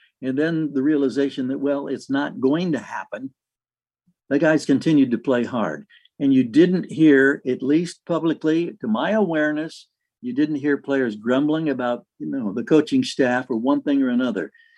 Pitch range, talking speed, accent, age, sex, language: 140-210 Hz, 175 wpm, American, 60-79, male, English